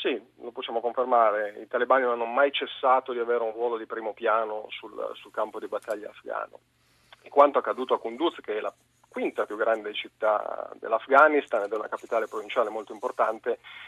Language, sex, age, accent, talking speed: Italian, male, 40-59, native, 185 wpm